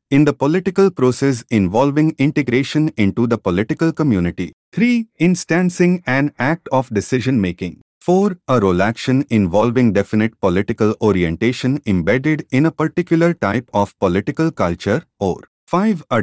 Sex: male